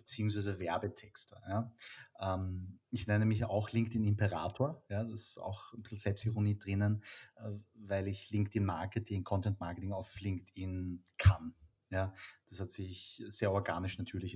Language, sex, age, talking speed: German, male, 30-49, 140 wpm